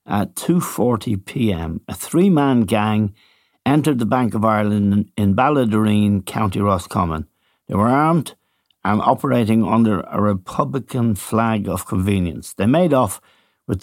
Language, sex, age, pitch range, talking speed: English, male, 60-79, 100-125 Hz, 125 wpm